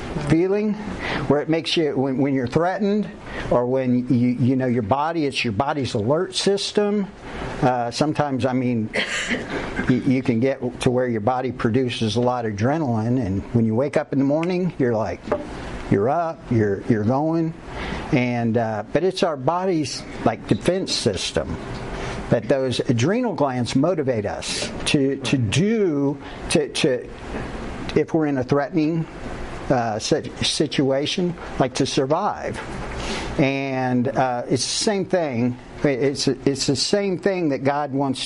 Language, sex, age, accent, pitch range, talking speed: English, male, 50-69, American, 125-160 Hz, 150 wpm